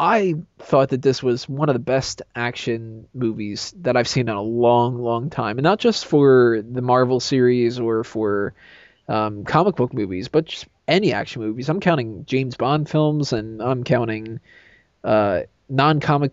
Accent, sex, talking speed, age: American, male, 175 wpm, 20-39